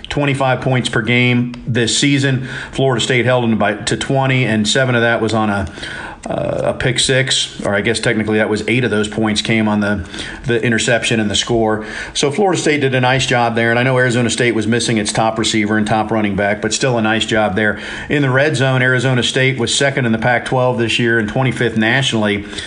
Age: 40-59